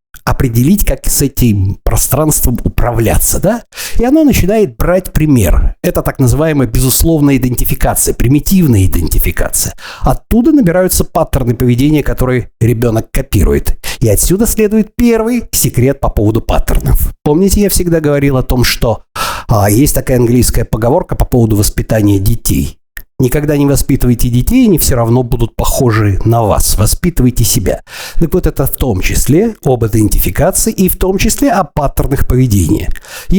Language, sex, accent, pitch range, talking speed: Russian, male, native, 115-150 Hz, 140 wpm